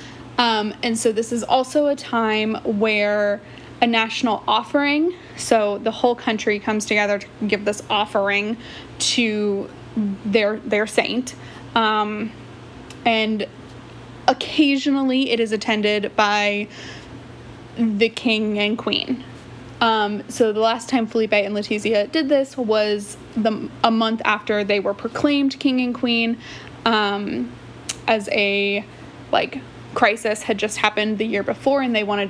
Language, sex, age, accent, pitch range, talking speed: English, female, 20-39, American, 210-250 Hz, 135 wpm